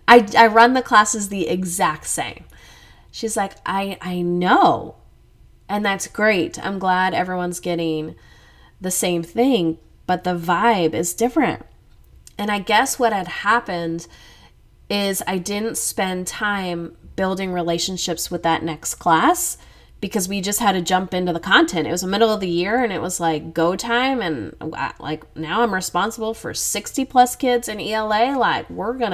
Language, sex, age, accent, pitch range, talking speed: English, female, 20-39, American, 175-215 Hz, 165 wpm